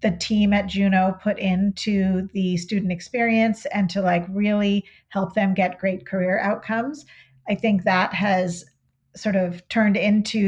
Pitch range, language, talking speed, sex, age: 185-215 Hz, English, 155 wpm, female, 40-59